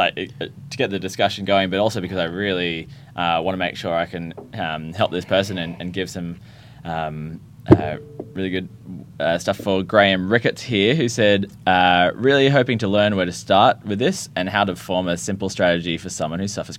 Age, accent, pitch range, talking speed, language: 20-39, Australian, 90-115 Hz, 205 wpm, English